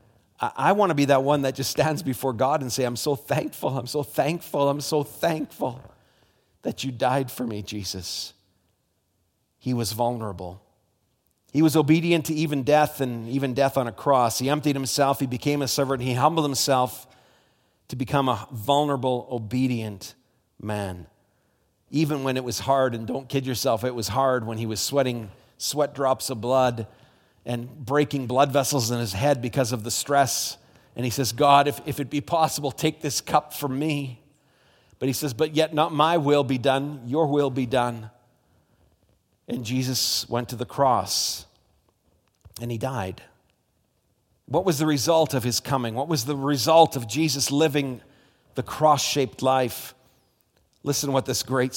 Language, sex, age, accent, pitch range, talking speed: English, male, 40-59, American, 115-145 Hz, 175 wpm